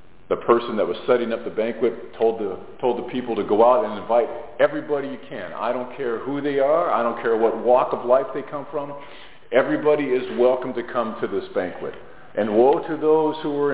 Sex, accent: male, American